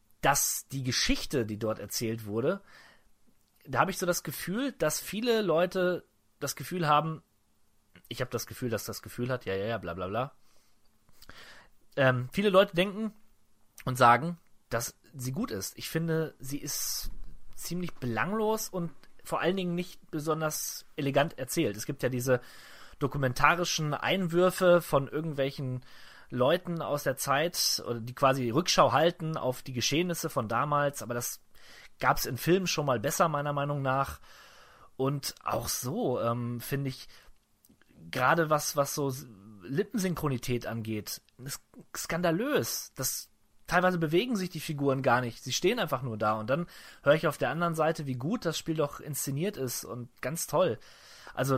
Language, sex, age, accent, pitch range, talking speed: German, male, 30-49, German, 120-165 Hz, 160 wpm